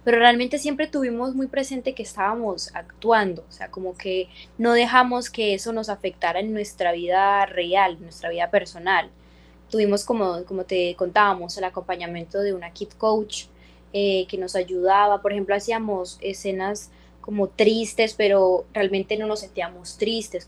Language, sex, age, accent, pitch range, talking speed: Spanish, female, 20-39, Colombian, 185-230 Hz, 160 wpm